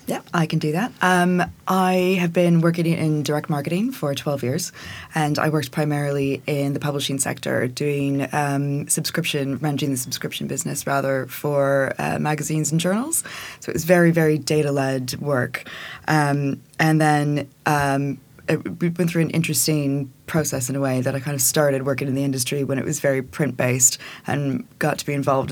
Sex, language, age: female, English, 20-39